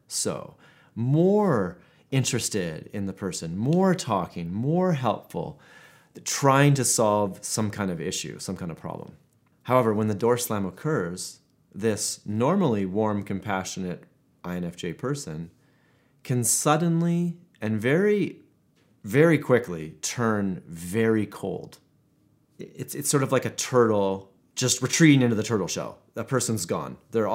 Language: English